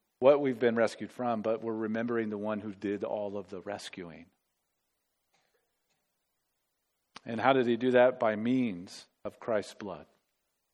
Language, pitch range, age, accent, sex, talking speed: English, 140-180 Hz, 50-69, American, male, 150 wpm